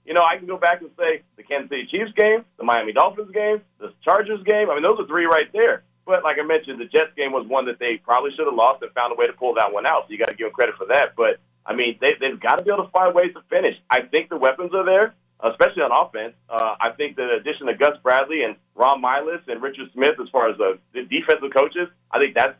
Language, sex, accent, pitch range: English, male, American, 140-210 Hz